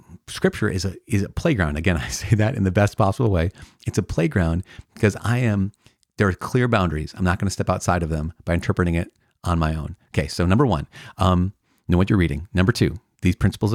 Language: English